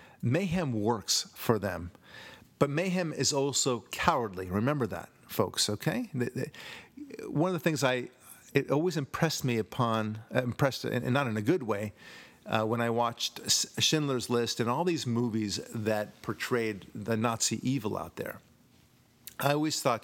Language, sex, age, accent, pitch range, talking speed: English, male, 50-69, American, 110-140 Hz, 150 wpm